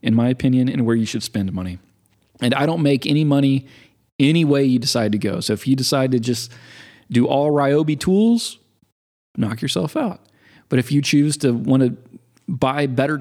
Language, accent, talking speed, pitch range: English, American, 190 wpm, 125-170 Hz